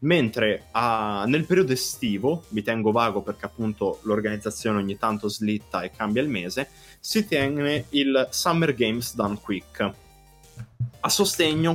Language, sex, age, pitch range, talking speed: Italian, male, 20-39, 110-155 Hz, 140 wpm